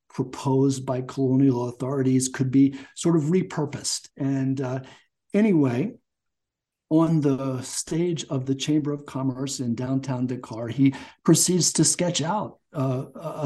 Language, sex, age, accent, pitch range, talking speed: English, male, 50-69, American, 130-150 Hz, 130 wpm